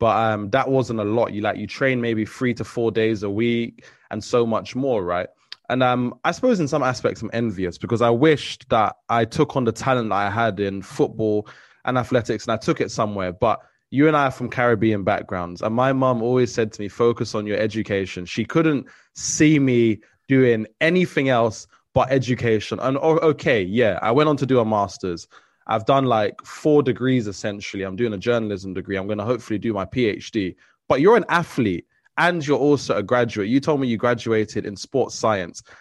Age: 20-39